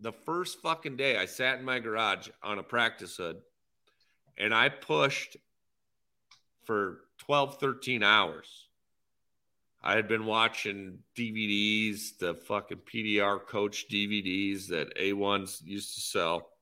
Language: English